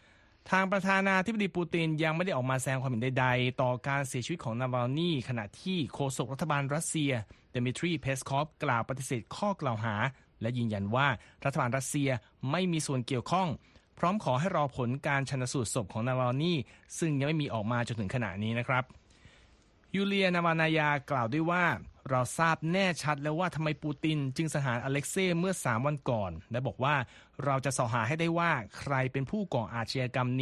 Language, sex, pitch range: Thai, male, 125-160 Hz